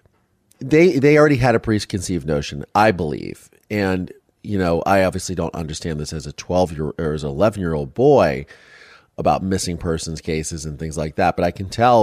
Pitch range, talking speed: 85-115 Hz, 200 wpm